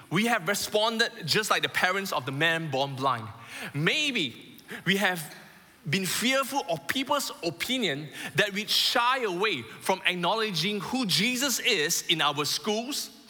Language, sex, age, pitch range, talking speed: English, male, 20-39, 160-225 Hz, 145 wpm